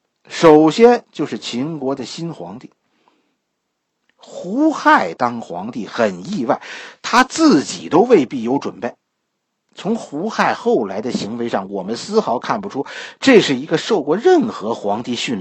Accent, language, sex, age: native, Chinese, male, 50-69